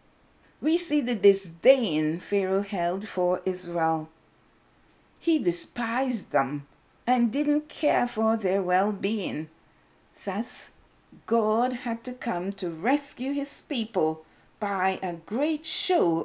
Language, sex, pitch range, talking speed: English, female, 185-275 Hz, 110 wpm